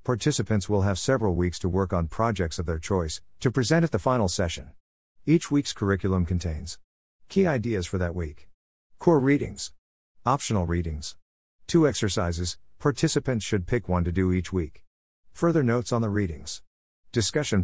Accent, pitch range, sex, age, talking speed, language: American, 85-120 Hz, male, 50-69, 160 wpm, English